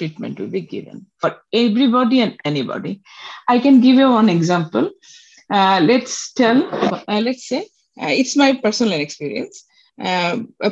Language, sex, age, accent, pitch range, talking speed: Bengali, female, 50-69, native, 175-255 Hz, 150 wpm